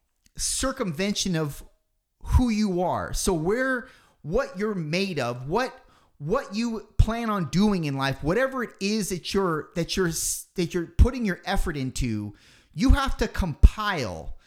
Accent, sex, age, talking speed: American, male, 30-49, 150 wpm